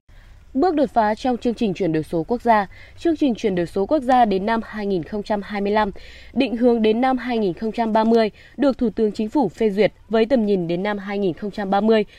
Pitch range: 185-245 Hz